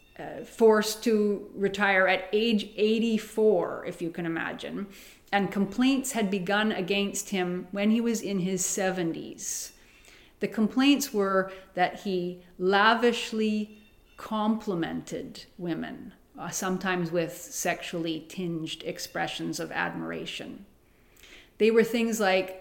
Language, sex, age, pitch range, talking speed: English, female, 40-59, 170-205 Hz, 115 wpm